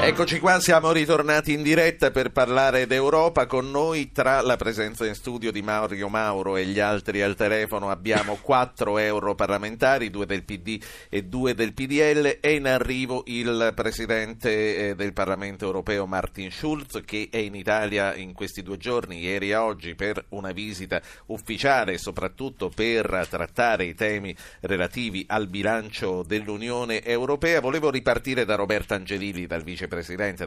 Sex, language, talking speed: male, Italian, 145 wpm